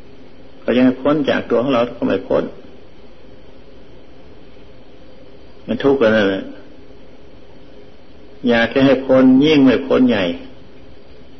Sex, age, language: male, 60-79, Thai